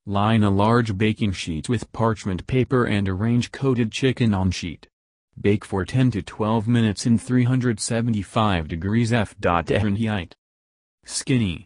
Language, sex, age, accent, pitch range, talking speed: English, male, 30-49, American, 90-115 Hz, 135 wpm